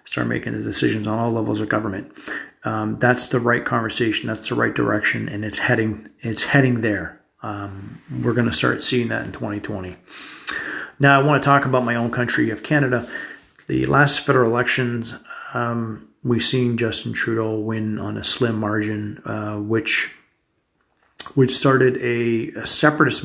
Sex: male